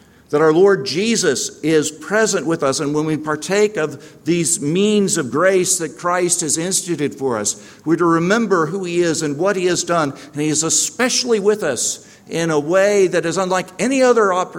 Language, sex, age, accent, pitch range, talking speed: English, male, 50-69, American, 105-155 Hz, 200 wpm